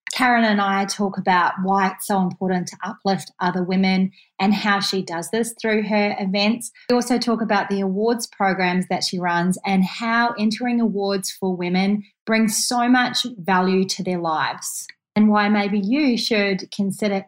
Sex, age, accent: female, 30-49, Australian